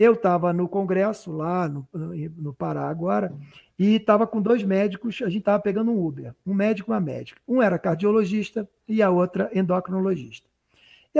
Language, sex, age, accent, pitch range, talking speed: Portuguese, male, 50-69, Brazilian, 170-220 Hz, 175 wpm